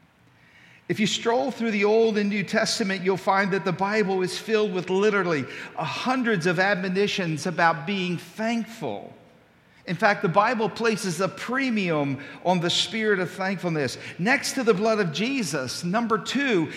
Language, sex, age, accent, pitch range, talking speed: English, male, 50-69, American, 140-205 Hz, 160 wpm